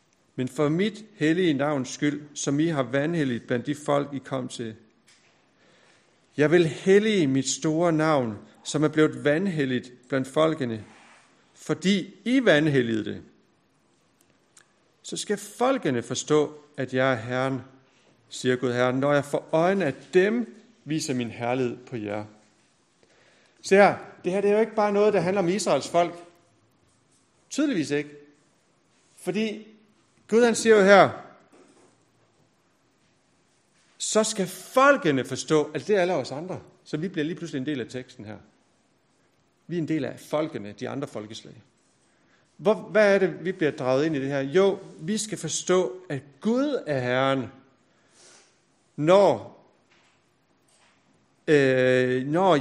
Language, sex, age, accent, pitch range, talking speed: Danish, male, 60-79, native, 130-190 Hz, 145 wpm